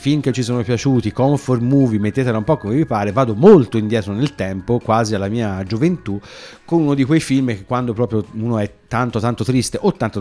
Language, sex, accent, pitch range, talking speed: Italian, male, native, 100-130 Hz, 215 wpm